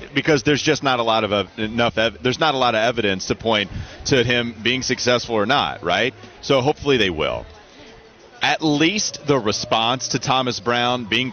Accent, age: American, 30-49